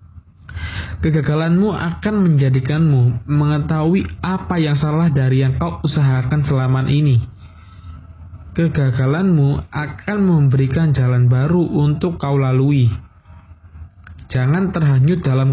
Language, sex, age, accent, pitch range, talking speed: Indonesian, male, 20-39, native, 100-145 Hz, 95 wpm